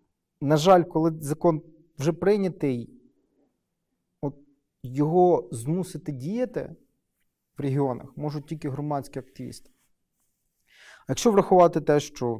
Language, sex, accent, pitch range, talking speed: Ukrainian, male, native, 125-150 Hz, 100 wpm